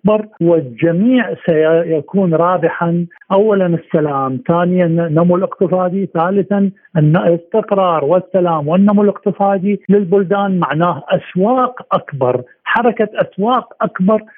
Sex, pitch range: male, 150-195 Hz